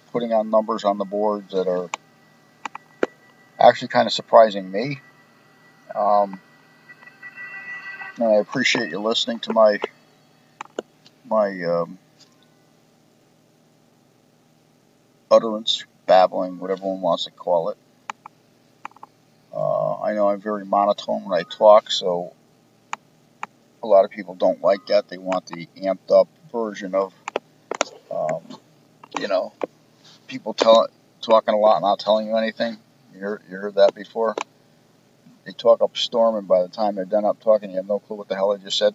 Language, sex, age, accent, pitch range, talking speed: English, male, 50-69, American, 95-110 Hz, 145 wpm